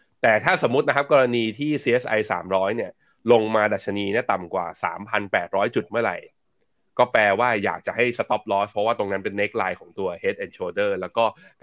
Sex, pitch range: male, 100-145 Hz